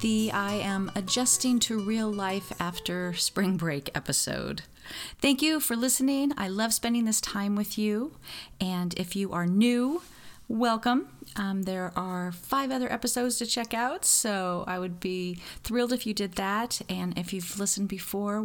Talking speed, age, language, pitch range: 165 wpm, 40-59, English, 185-250 Hz